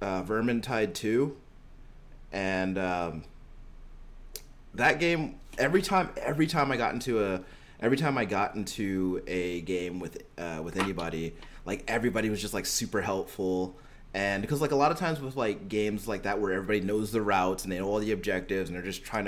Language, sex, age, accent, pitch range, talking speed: English, male, 20-39, American, 95-115 Hz, 185 wpm